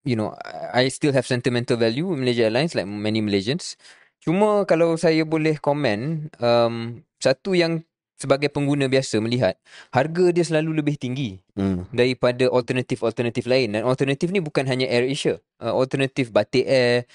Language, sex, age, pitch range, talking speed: Malay, male, 20-39, 120-150 Hz, 145 wpm